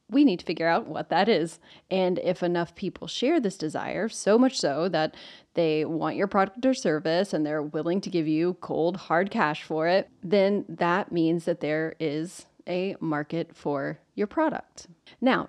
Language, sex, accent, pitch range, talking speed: English, female, American, 160-205 Hz, 180 wpm